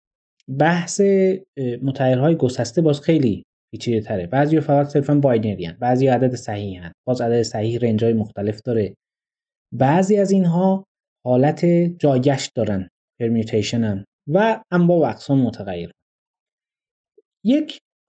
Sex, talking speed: male, 120 wpm